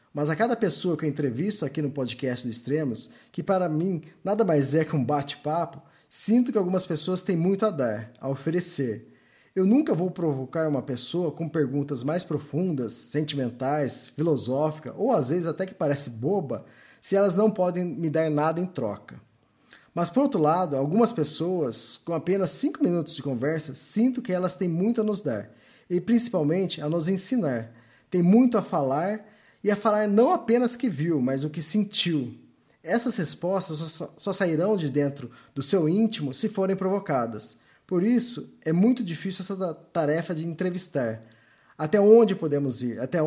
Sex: male